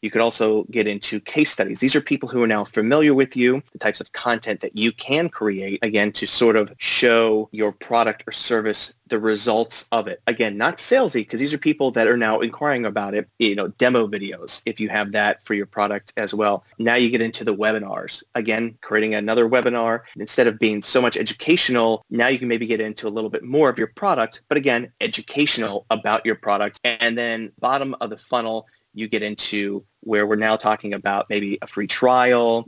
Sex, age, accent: male, 30-49, American